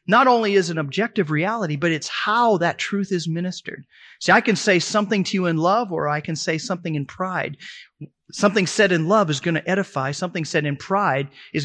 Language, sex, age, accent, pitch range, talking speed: English, male, 30-49, American, 150-195 Hz, 215 wpm